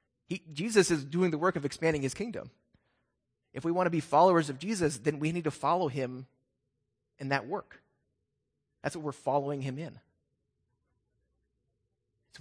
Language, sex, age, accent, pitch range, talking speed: English, male, 30-49, American, 110-145 Hz, 160 wpm